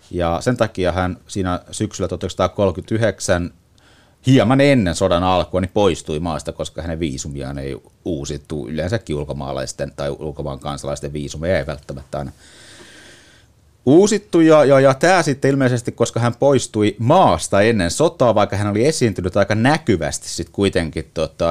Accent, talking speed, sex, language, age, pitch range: native, 140 wpm, male, Finnish, 30-49, 80-105 Hz